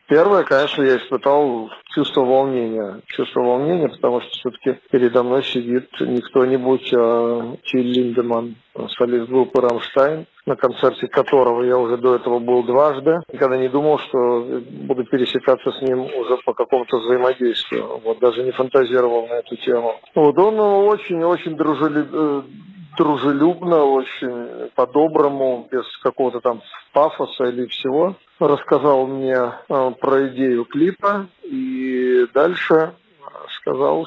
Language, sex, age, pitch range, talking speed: Russian, male, 40-59, 125-150 Hz, 125 wpm